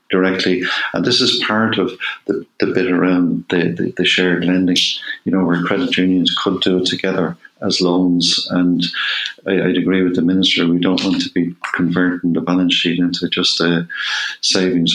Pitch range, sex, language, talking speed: 90-95 Hz, male, English, 185 wpm